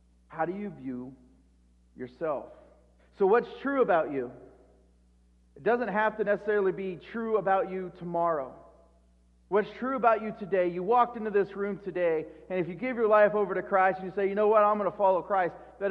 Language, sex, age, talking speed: English, male, 40-59, 195 wpm